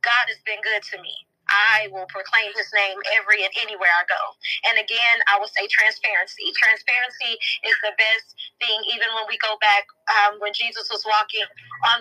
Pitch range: 210-240 Hz